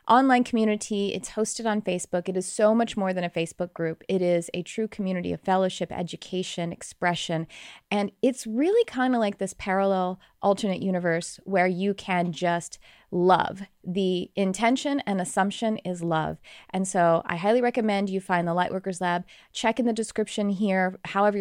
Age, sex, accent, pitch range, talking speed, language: 30-49, female, American, 180-220 Hz, 170 wpm, English